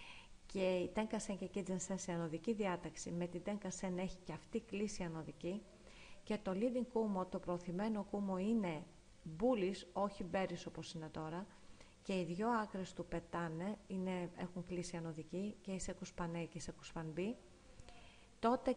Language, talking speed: Greek, 165 wpm